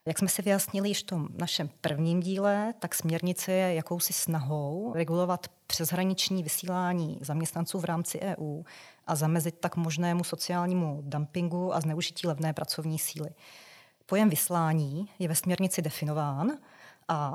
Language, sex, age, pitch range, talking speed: Czech, female, 30-49, 160-180 Hz, 140 wpm